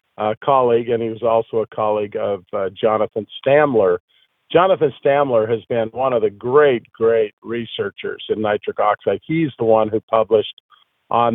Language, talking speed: English, 165 wpm